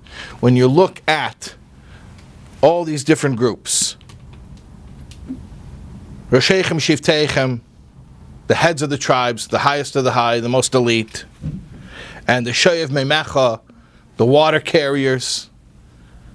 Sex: male